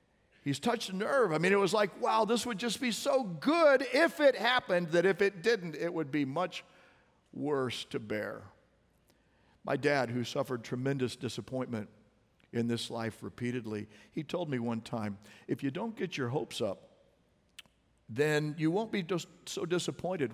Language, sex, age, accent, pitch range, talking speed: English, male, 50-69, American, 130-210 Hz, 175 wpm